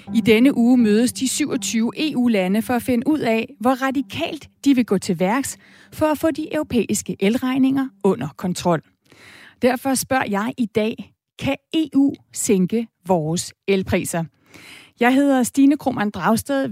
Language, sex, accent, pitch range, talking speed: Danish, female, native, 200-270 Hz, 150 wpm